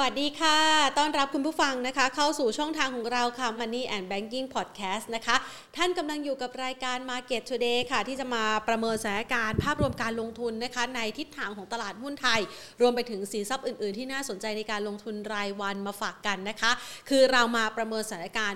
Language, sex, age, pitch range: Thai, female, 30-49, 210-255 Hz